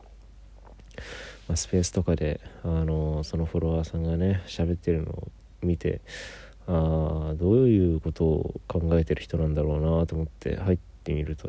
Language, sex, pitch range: Japanese, male, 80-95 Hz